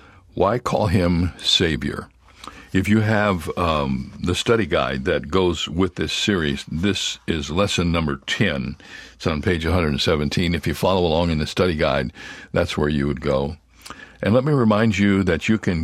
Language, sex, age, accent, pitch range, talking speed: English, male, 60-79, American, 80-100 Hz, 175 wpm